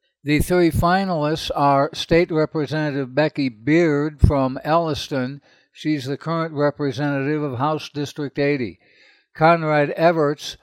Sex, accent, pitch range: male, American, 135-155 Hz